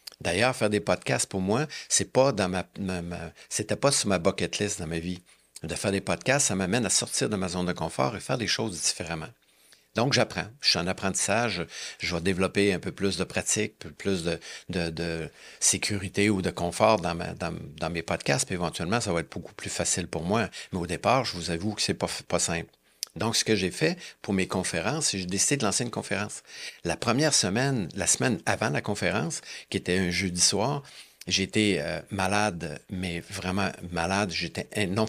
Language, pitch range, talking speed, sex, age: French, 90-105 Hz, 200 wpm, male, 50-69